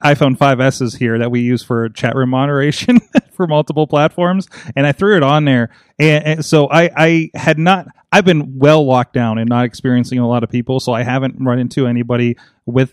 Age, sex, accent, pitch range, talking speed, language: 30-49, male, American, 125-155 Hz, 210 wpm, English